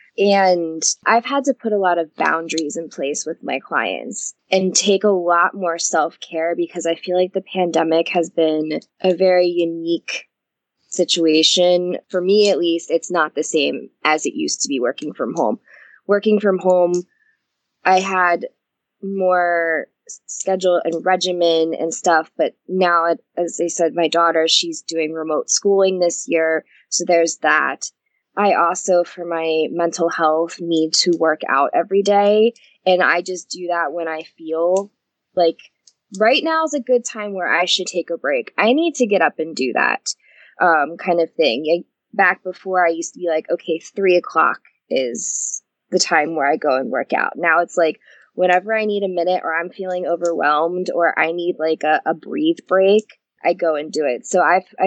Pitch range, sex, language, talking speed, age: 165-190 Hz, female, English, 185 wpm, 20-39